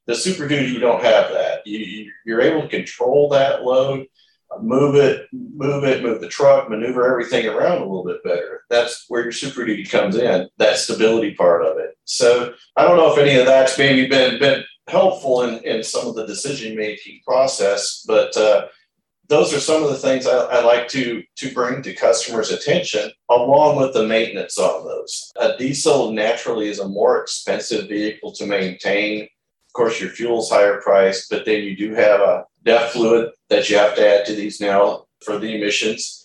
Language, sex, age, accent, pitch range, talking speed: English, male, 50-69, American, 110-160 Hz, 195 wpm